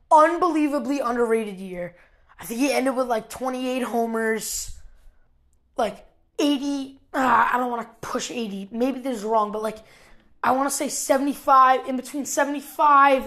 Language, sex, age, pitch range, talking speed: English, female, 20-39, 220-275 Hz, 155 wpm